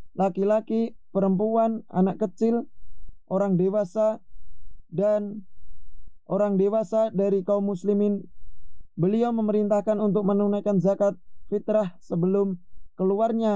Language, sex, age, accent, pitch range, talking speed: Indonesian, male, 20-39, native, 155-205 Hz, 90 wpm